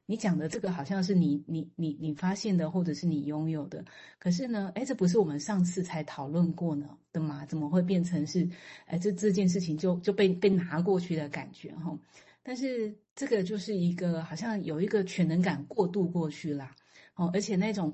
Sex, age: female, 30-49